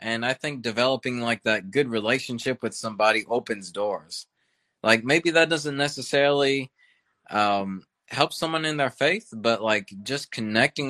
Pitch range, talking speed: 105-130 Hz, 150 wpm